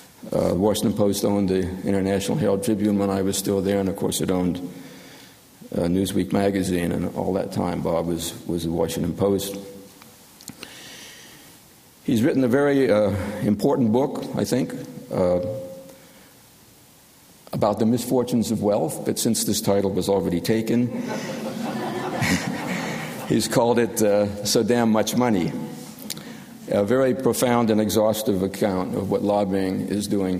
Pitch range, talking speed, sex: 95-110 Hz, 140 wpm, male